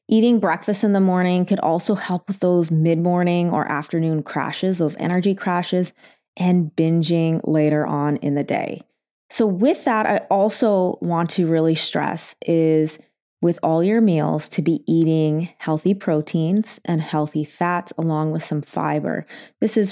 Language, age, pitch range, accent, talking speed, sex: English, 20-39, 160-190 Hz, American, 155 wpm, female